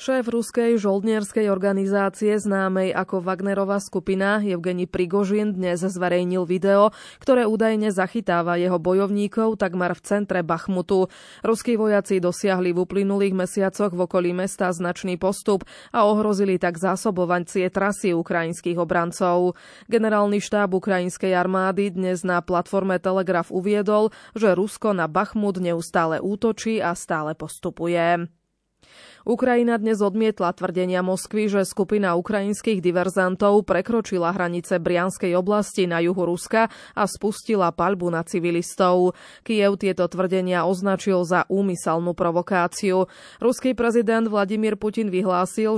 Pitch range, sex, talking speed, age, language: 180-210 Hz, female, 120 wpm, 20-39, Slovak